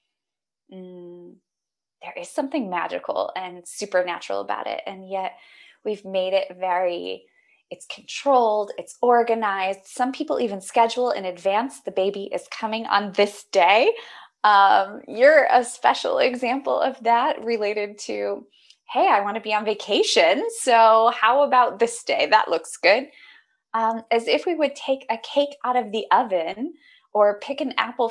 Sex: female